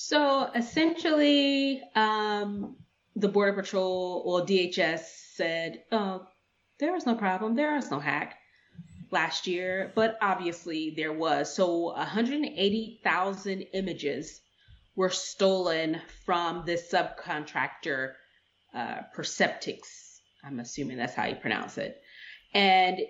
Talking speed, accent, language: 110 wpm, American, English